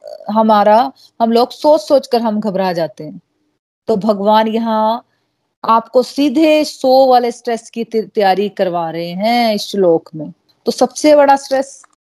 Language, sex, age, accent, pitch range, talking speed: Hindi, female, 30-49, native, 200-235 Hz, 150 wpm